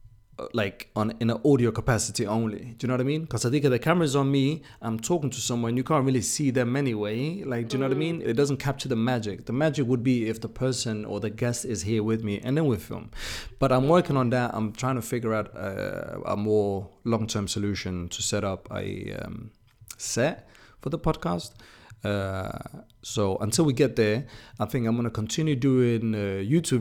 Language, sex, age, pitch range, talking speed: English, male, 30-49, 110-130 Hz, 225 wpm